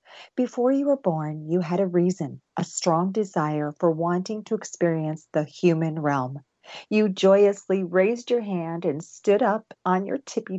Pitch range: 160-220 Hz